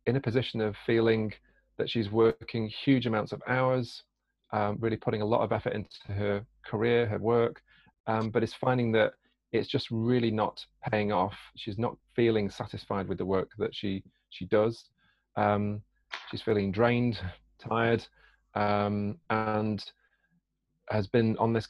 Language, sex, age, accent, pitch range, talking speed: English, male, 30-49, British, 105-115 Hz, 160 wpm